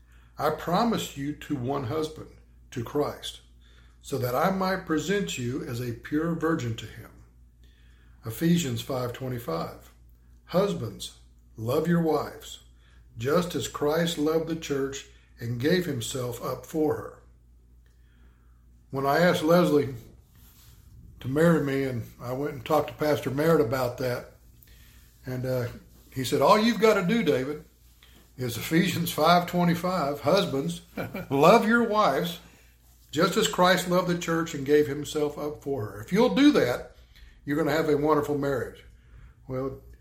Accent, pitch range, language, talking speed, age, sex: American, 110-160 Hz, English, 145 wpm, 60-79, male